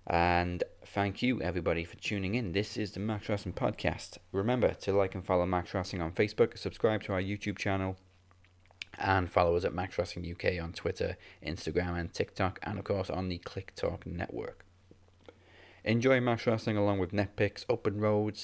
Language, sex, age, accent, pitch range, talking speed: English, male, 20-39, British, 90-105 Hz, 170 wpm